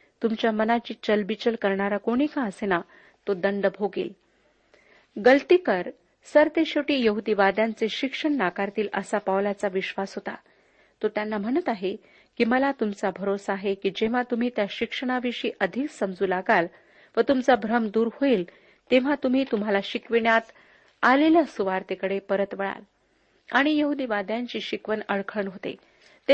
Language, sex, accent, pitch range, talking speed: Marathi, female, native, 200-255 Hz, 130 wpm